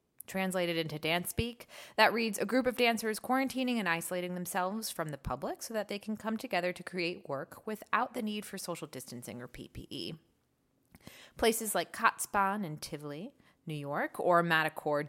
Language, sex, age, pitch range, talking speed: English, female, 30-49, 150-210 Hz, 170 wpm